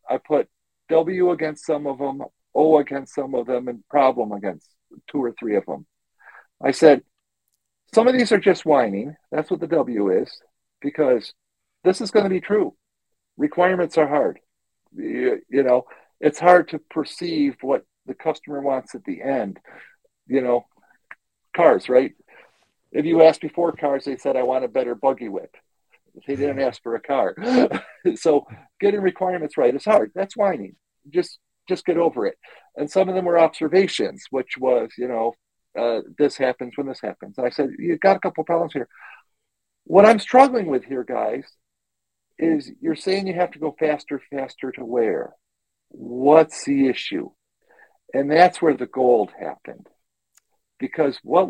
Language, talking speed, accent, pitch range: English, 170 wpm, American, 140-190 Hz